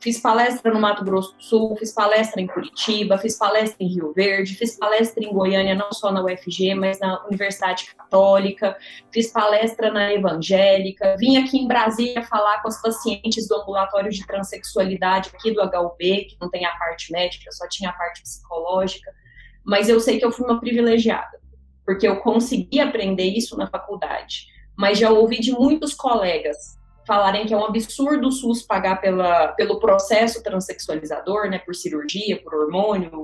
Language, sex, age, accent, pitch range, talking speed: Portuguese, female, 20-39, Brazilian, 190-230 Hz, 175 wpm